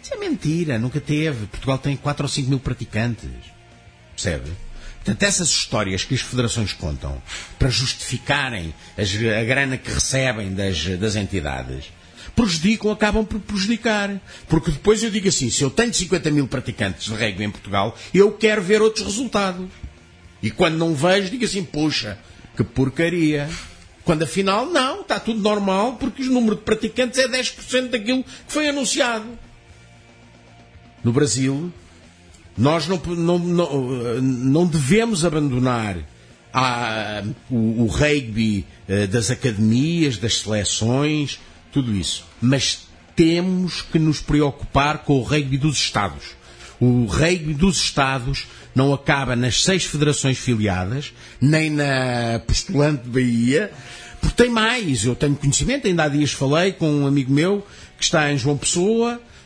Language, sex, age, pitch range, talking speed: Portuguese, male, 50-69, 115-175 Hz, 140 wpm